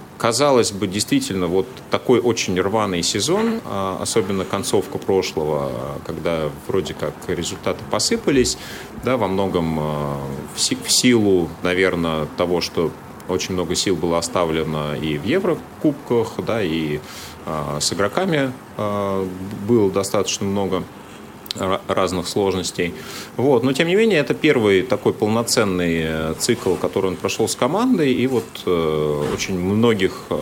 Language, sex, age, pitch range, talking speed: Russian, male, 30-49, 85-105 Hz, 120 wpm